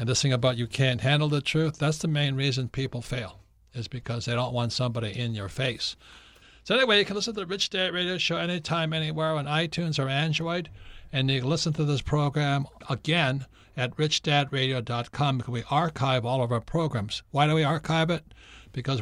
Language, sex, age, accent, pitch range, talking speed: English, male, 60-79, American, 120-150 Hz, 200 wpm